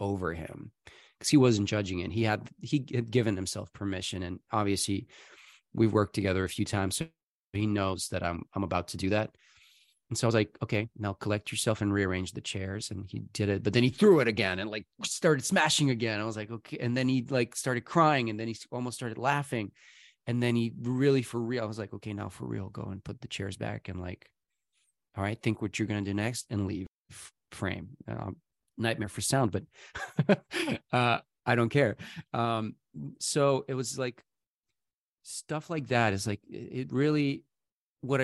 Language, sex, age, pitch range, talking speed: English, male, 30-49, 100-120 Hz, 205 wpm